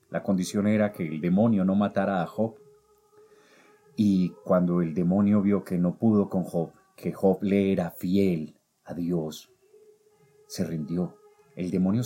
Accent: Colombian